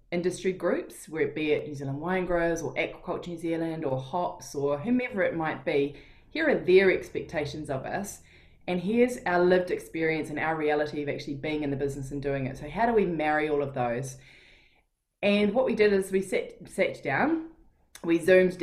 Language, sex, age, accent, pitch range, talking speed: English, female, 20-39, Australian, 150-180 Hz, 205 wpm